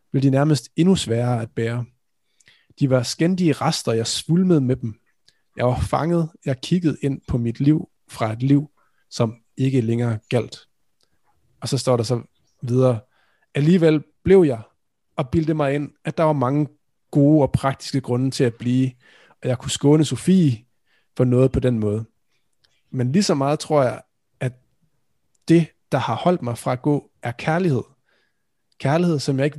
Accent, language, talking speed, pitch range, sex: native, Danish, 170 wpm, 125-150 Hz, male